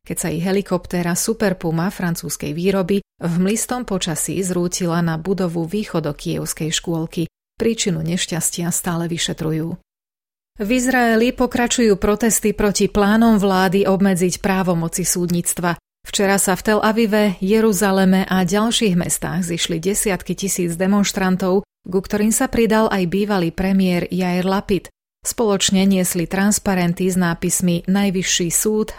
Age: 30-49